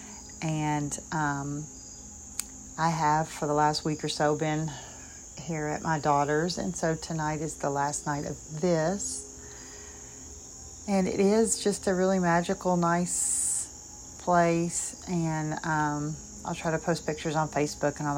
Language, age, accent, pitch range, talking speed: English, 40-59, American, 150-185 Hz, 145 wpm